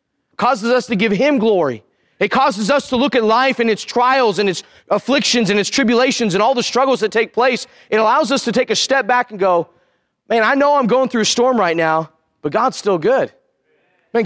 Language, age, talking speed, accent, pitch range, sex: English, 30-49, 225 wpm, American, 190-250 Hz, male